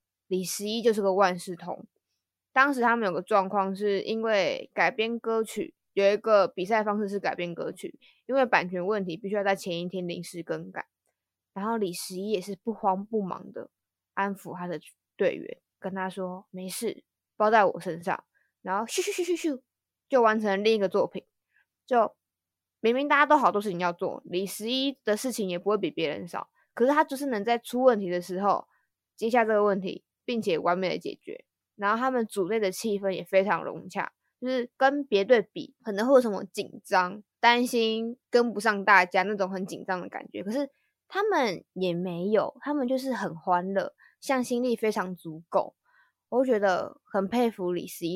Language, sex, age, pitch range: Chinese, female, 20-39, 185-240 Hz